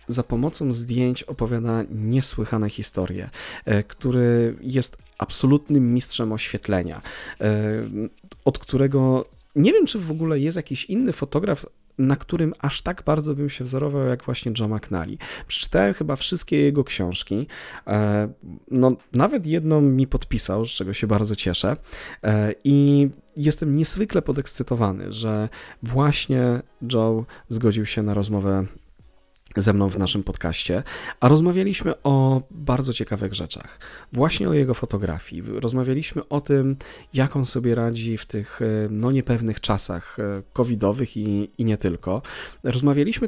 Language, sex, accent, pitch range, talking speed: Polish, male, native, 105-135 Hz, 130 wpm